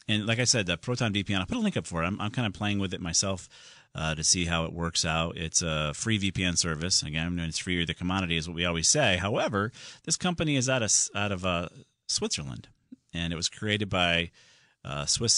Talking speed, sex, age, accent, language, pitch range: 240 wpm, male, 40-59, American, English, 85-115 Hz